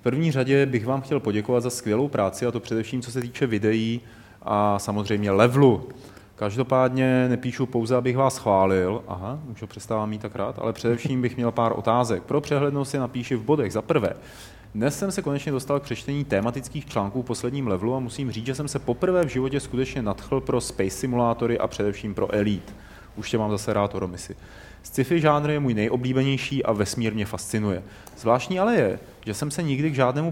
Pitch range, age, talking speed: 105-135 Hz, 30-49, 195 wpm